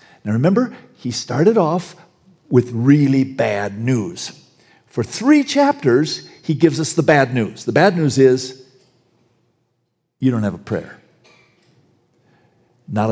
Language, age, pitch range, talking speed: English, 50-69, 135-215 Hz, 130 wpm